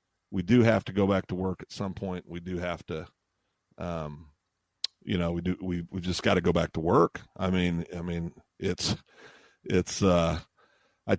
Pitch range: 90-110 Hz